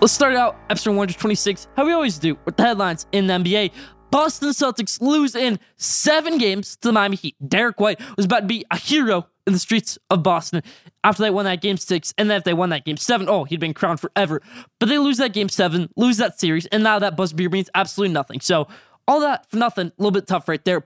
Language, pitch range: English, 175-220 Hz